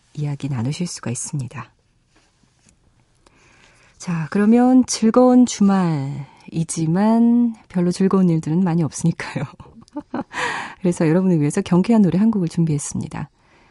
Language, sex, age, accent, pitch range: Korean, female, 40-59, native, 150-215 Hz